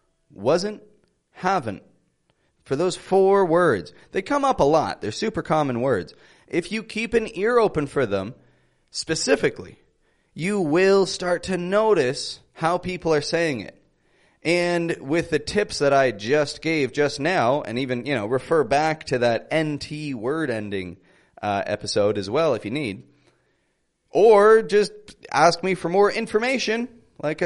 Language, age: English, 30-49